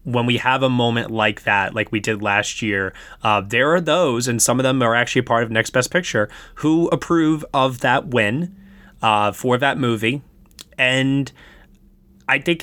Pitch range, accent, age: 110-130 Hz, American, 20-39